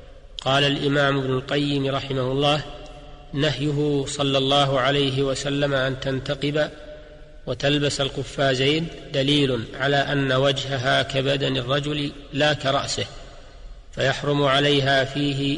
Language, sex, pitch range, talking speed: Arabic, male, 135-145 Hz, 100 wpm